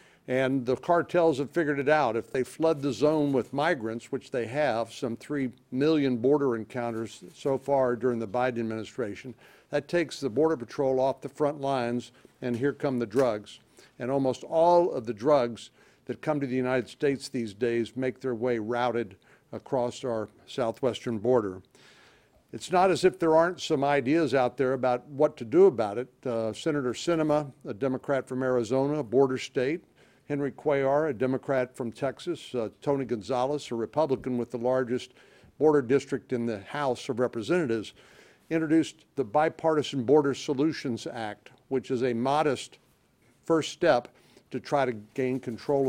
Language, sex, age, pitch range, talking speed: English, male, 60-79, 125-150 Hz, 165 wpm